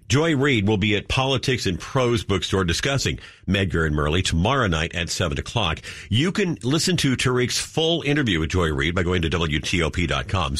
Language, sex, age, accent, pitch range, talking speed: English, male, 50-69, American, 95-130 Hz, 180 wpm